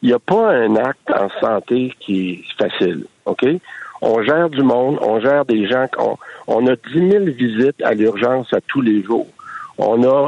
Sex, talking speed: male, 200 wpm